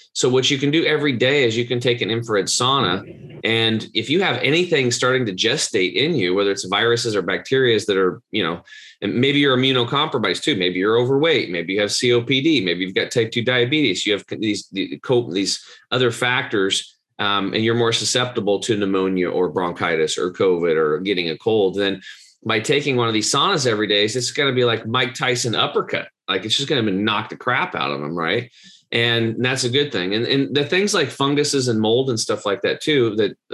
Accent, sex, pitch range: American, male, 105-135 Hz